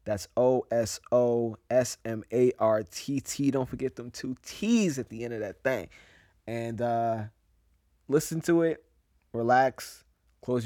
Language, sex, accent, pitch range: English, male, American, 105-125 Hz